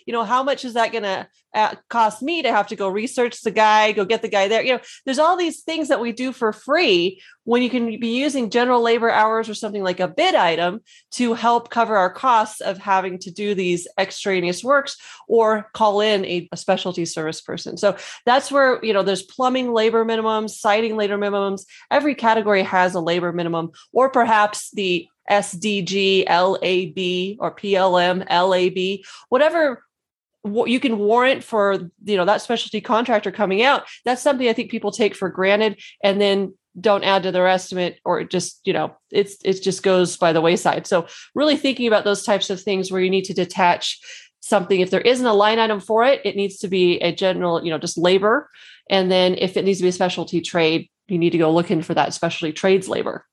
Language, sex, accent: English, female, American